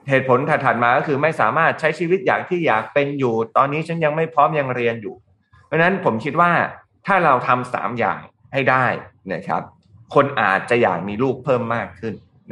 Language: Thai